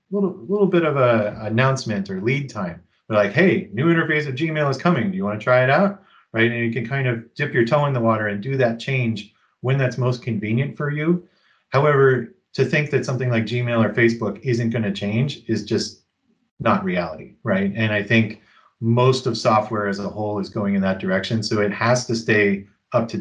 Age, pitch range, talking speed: 40-59, 105-130 Hz, 215 wpm